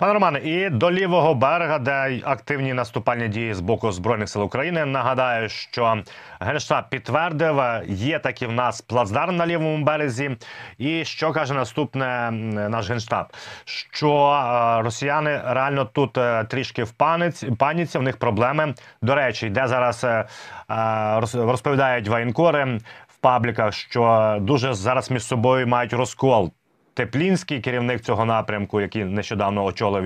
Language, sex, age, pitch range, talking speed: Ukrainian, male, 30-49, 115-140 Hz, 130 wpm